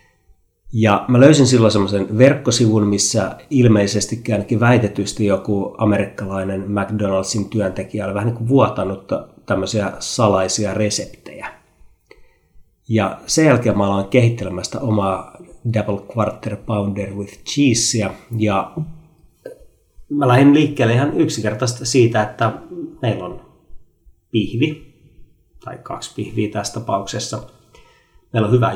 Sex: male